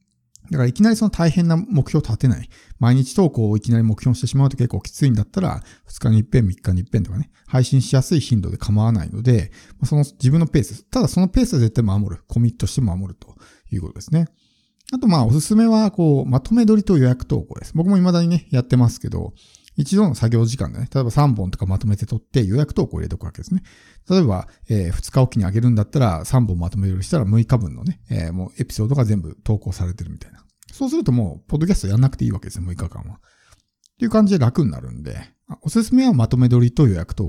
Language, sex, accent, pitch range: Japanese, male, native, 105-150 Hz